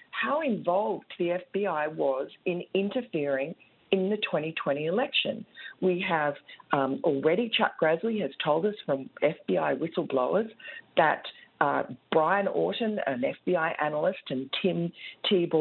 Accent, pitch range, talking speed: Australian, 140-205 Hz, 125 wpm